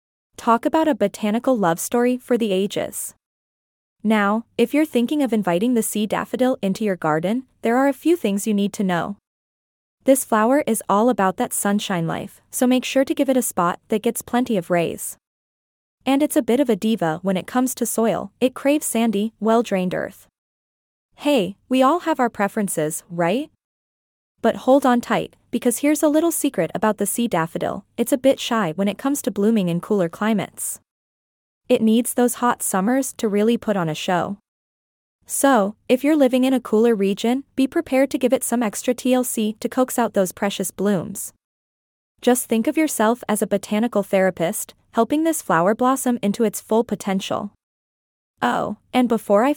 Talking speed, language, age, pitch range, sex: 185 wpm, English, 20-39, 200-255 Hz, female